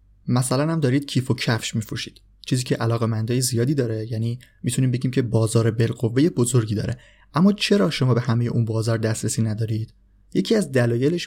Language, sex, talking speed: Persian, male, 175 wpm